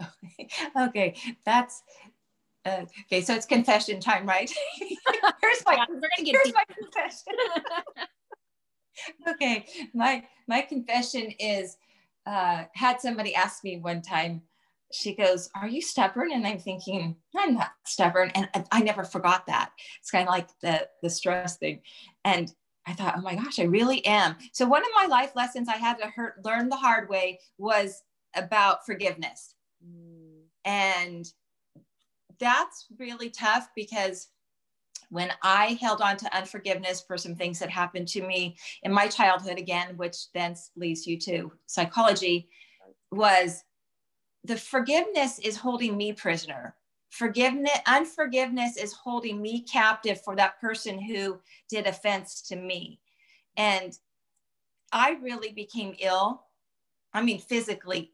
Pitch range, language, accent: 185-245 Hz, English, American